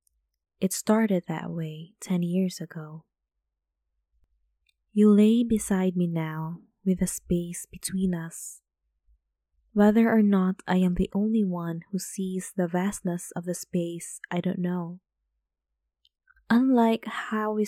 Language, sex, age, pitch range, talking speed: English, female, 20-39, 160-195 Hz, 130 wpm